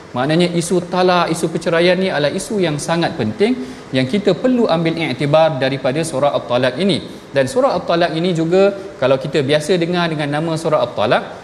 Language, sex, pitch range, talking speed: Malayalam, male, 150-195 Hz, 175 wpm